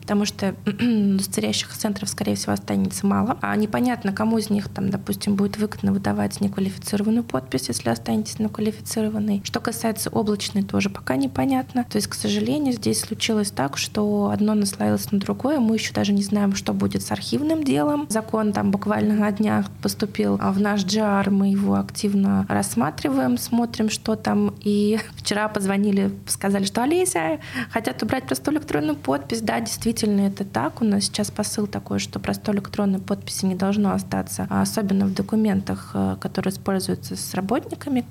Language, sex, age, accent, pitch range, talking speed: Russian, female, 20-39, native, 140-215 Hz, 160 wpm